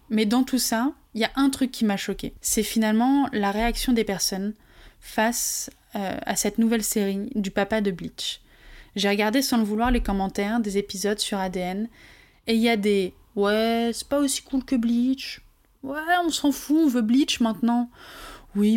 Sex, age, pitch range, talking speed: female, 20-39, 205-240 Hz, 200 wpm